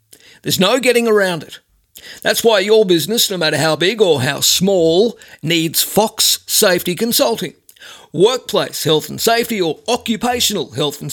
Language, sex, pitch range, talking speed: English, male, 165-220 Hz, 150 wpm